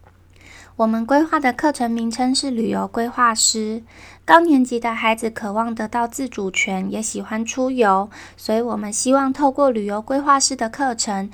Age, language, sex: 20-39, Chinese, female